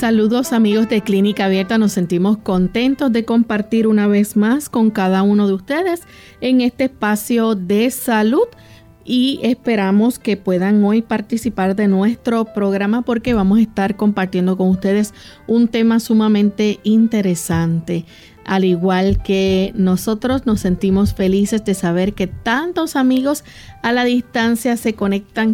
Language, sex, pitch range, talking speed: Spanish, female, 195-235 Hz, 140 wpm